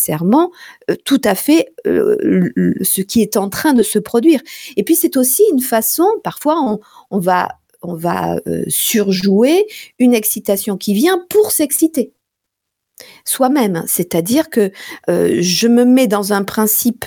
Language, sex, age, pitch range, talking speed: French, female, 40-59, 205-305 Hz, 150 wpm